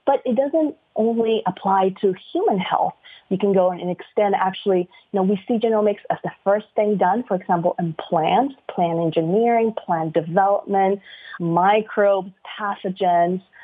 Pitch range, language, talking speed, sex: 185-245 Hz, English, 150 wpm, female